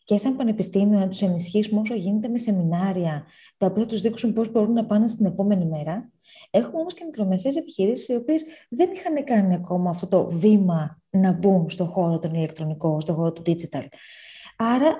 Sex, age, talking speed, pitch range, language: female, 20-39, 185 wpm, 185-275 Hz, Greek